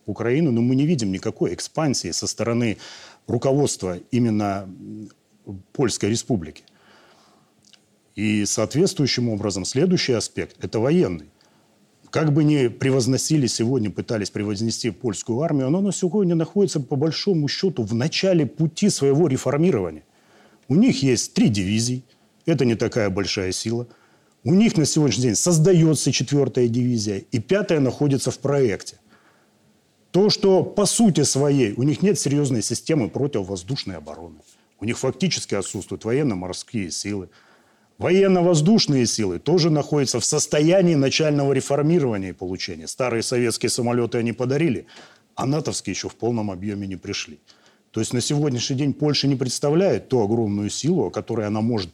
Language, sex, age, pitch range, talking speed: Russian, male, 40-59, 105-150 Hz, 140 wpm